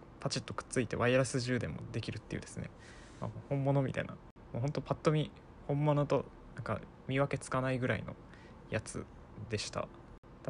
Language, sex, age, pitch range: Japanese, male, 20-39, 110-135 Hz